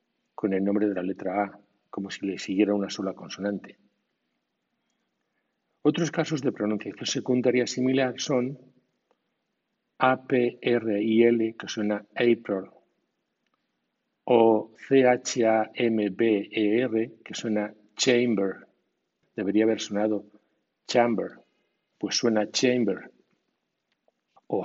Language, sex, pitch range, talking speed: Spanish, male, 100-120 Hz, 95 wpm